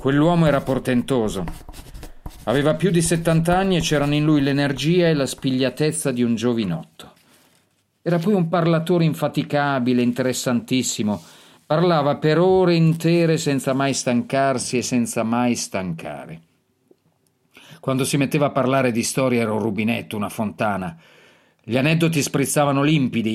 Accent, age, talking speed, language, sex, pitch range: native, 40-59, 130 wpm, Italian, male, 120-155 Hz